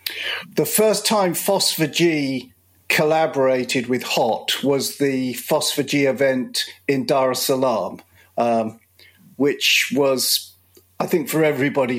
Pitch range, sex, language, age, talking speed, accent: 125-160 Hz, male, English, 50-69, 110 wpm, British